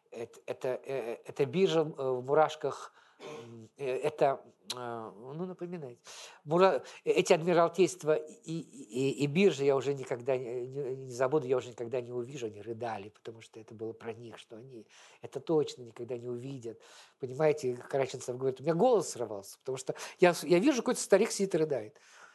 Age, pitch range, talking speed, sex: 50-69, 125-195 Hz, 160 wpm, male